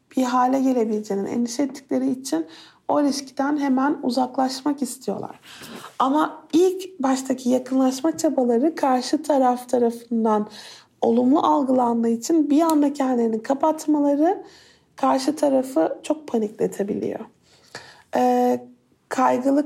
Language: Turkish